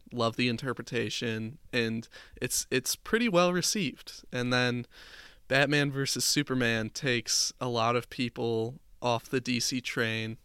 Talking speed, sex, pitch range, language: 130 wpm, male, 110-125 Hz, English